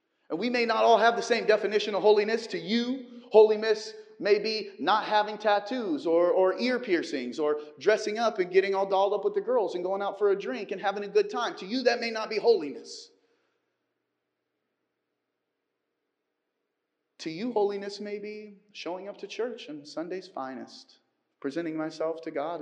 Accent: American